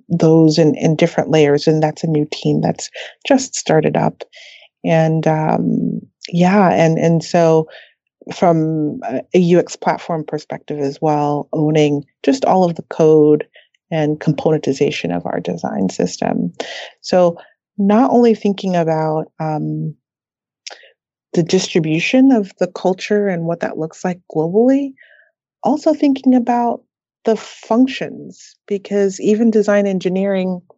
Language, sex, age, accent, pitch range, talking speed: English, female, 30-49, American, 160-200 Hz, 125 wpm